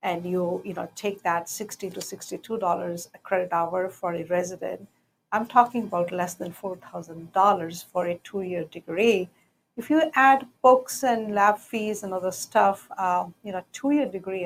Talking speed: 170 wpm